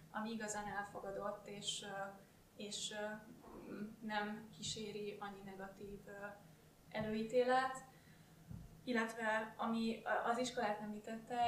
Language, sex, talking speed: Hungarian, female, 85 wpm